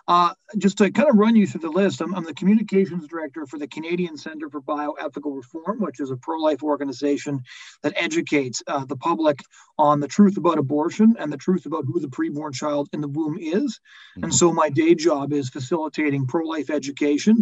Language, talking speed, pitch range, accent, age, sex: English, 200 wpm, 145-175 Hz, American, 40-59, male